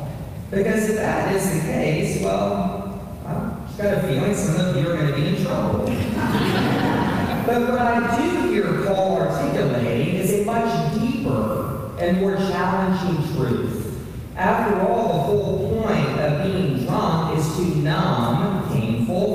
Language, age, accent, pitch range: English, 40-59, American, 125-175 Hz